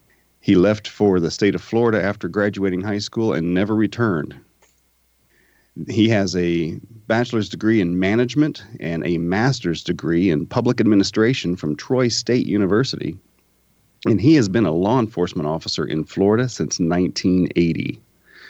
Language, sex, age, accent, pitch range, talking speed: English, male, 40-59, American, 85-115 Hz, 145 wpm